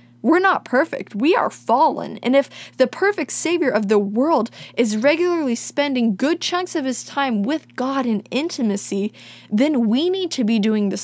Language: English